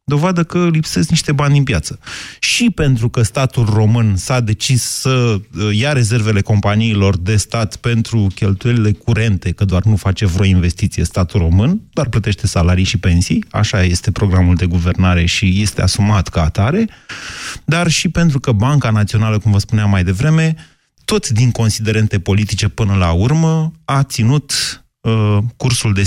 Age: 30-49